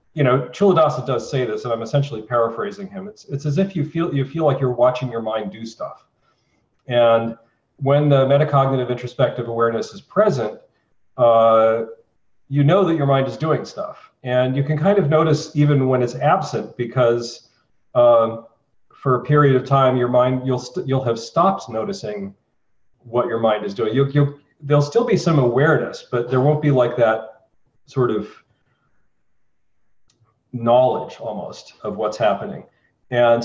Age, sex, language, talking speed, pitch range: 40-59, male, English, 170 wpm, 115-145 Hz